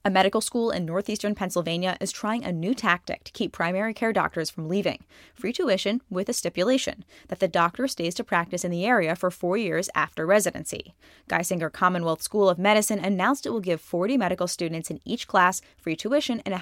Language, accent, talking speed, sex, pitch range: English, American, 200 wpm, female, 170-210 Hz